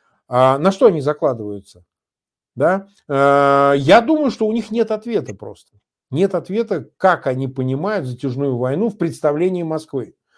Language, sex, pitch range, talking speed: Russian, male, 130-210 Hz, 135 wpm